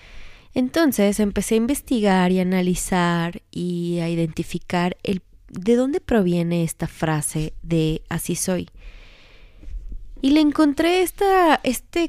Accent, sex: Mexican, female